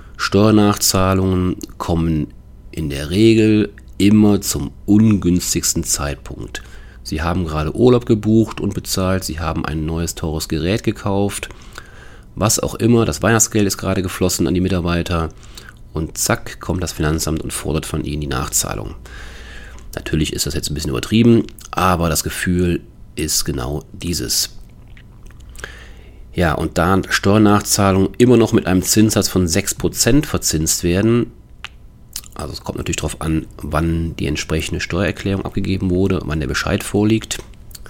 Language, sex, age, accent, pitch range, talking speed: German, male, 40-59, German, 80-105 Hz, 140 wpm